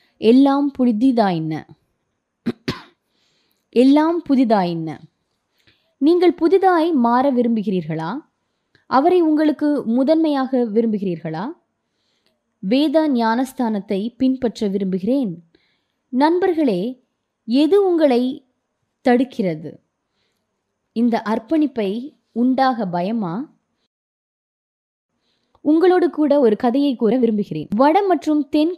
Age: 20-39